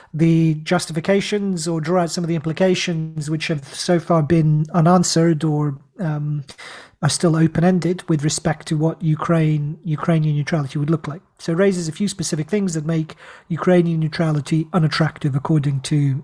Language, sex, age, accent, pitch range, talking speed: English, male, 40-59, British, 160-180 Hz, 165 wpm